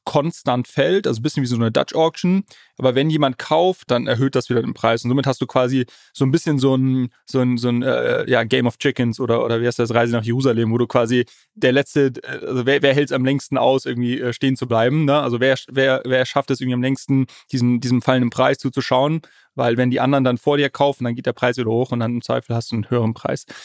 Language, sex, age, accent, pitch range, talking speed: German, male, 30-49, German, 120-140 Hz, 245 wpm